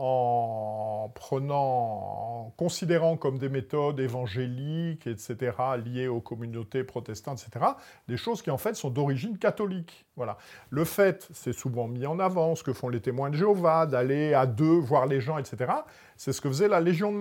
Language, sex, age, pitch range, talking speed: French, male, 50-69, 125-165 Hz, 175 wpm